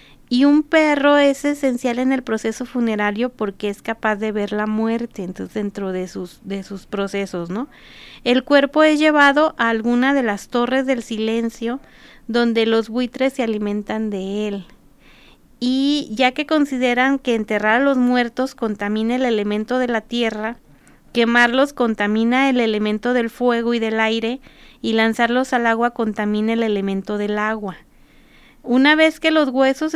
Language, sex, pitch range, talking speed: Spanish, female, 215-260 Hz, 160 wpm